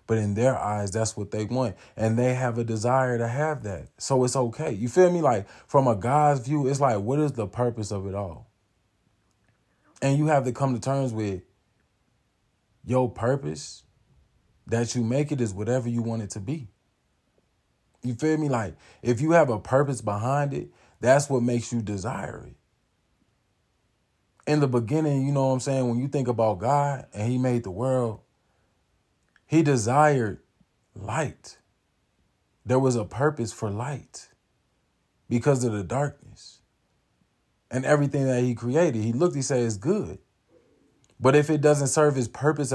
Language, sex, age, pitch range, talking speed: English, male, 20-39, 110-145 Hz, 175 wpm